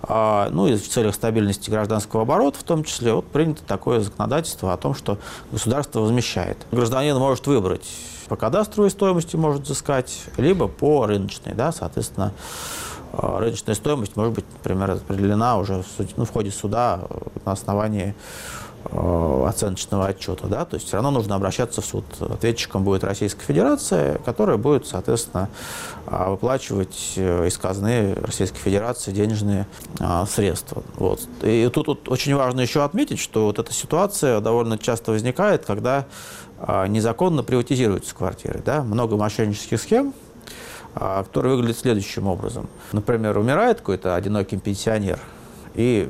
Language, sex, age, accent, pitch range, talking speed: Russian, male, 30-49, native, 100-130 Hz, 140 wpm